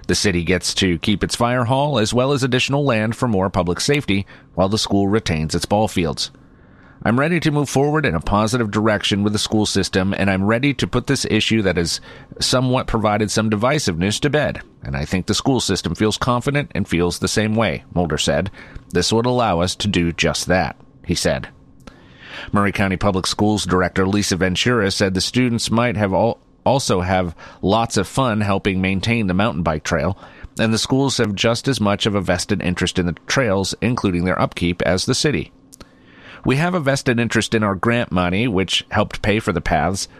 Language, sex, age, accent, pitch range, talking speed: English, male, 30-49, American, 95-120 Hz, 205 wpm